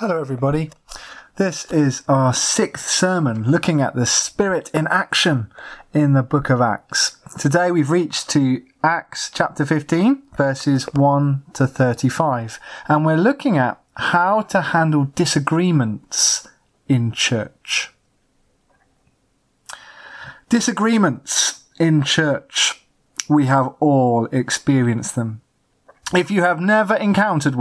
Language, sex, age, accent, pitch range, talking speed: English, male, 20-39, British, 130-170 Hz, 115 wpm